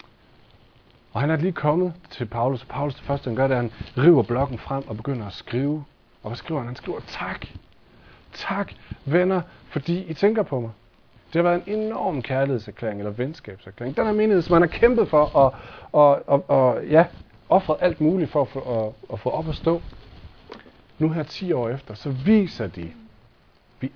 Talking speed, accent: 190 wpm, native